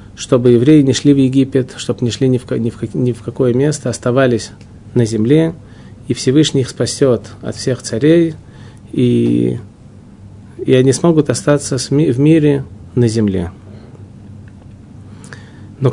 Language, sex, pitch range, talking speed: Russian, male, 110-135 Hz, 145 wpm